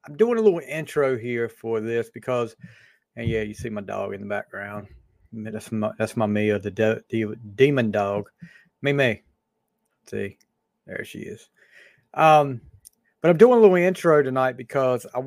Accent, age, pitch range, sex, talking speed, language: American, 40-59, 120-145 Hz, male, 175 wpm, English